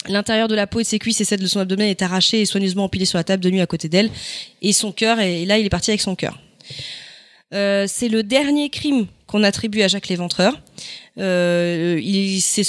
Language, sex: French, female